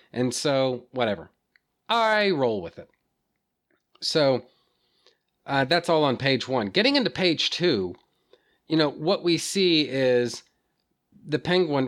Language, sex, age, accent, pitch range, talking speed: English, male, 40-59, American, 120-165 Hz, 130 wpm